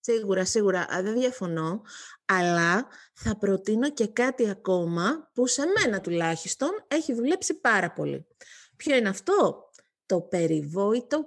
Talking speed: 120 wpm